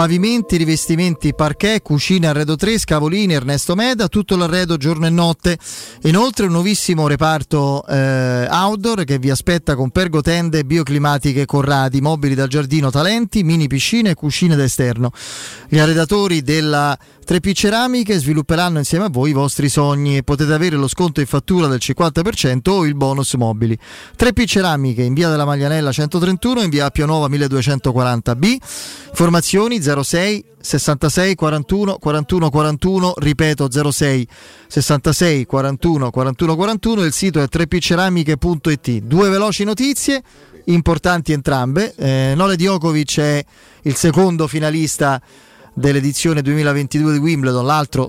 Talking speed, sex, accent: 130 wpm, male, native